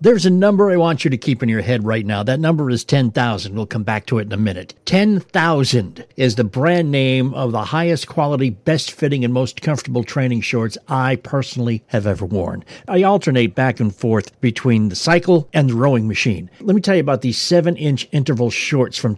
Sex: male